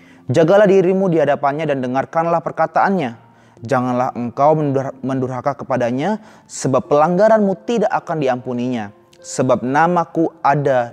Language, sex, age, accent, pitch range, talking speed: Indonesian, male, 20-39, native, 115-160 Hz, 105 wpm